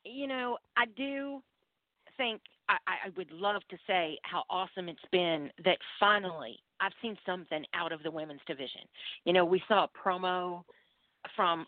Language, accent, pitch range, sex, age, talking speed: English, American, 165-190 Hz, female, 40-59, 165 wpm